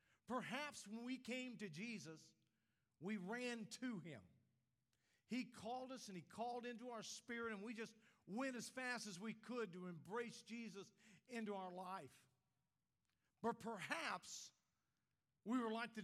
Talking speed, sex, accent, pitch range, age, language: 150 wpm, male, American, 180-245 Hz, 50-69, English